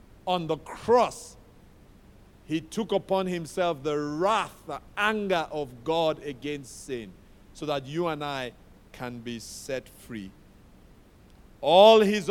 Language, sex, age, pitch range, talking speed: English, male, 50-69, 115-180 Hz, 125 wpm